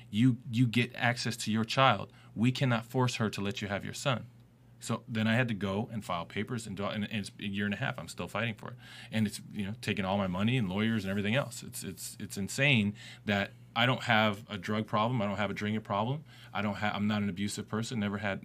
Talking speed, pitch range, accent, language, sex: 260 wpm, 105-120 Hz, American, English, male